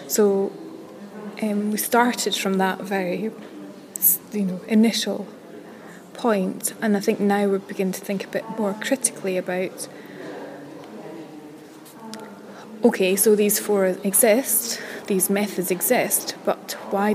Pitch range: 195-215 Hz